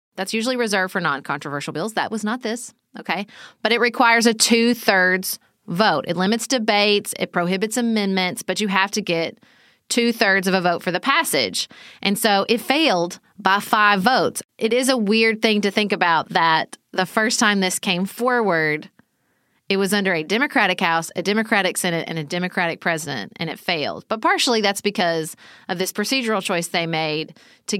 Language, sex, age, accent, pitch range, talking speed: English, female, 30-49, American, 180-235 Hz, 180 wpm